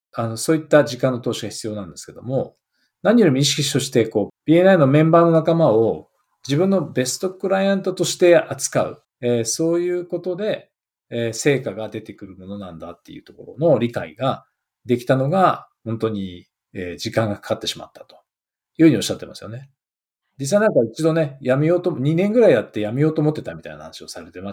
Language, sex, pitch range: Japanese, male, 110-160 Hz